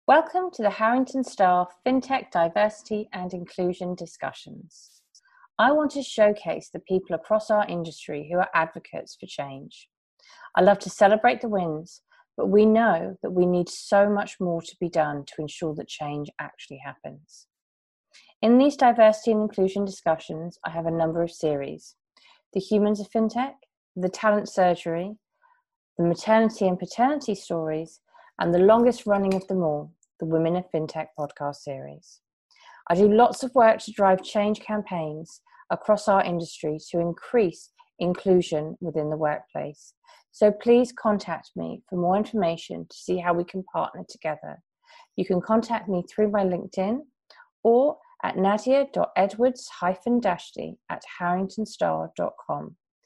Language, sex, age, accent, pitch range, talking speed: English, female, 30-49, British, 170-220 Hz, 145 wpm